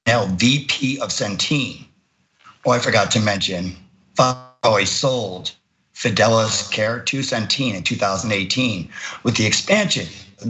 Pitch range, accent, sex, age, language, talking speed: 100-130 Hz, American, male, 50-69, English, 120 wpm